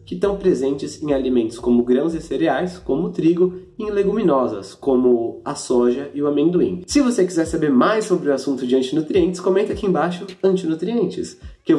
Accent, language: Brazilian, Portuguese